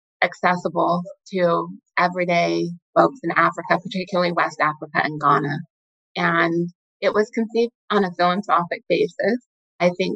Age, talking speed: 20-39, 125 wpm